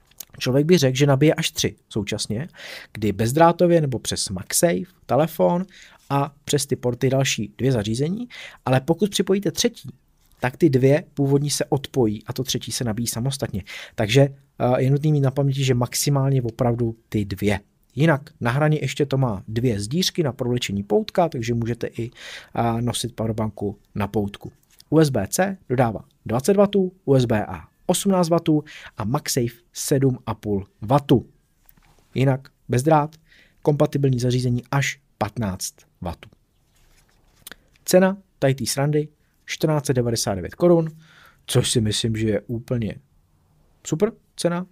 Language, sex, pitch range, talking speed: Czech, male, 105-150 Hz, 130 wpm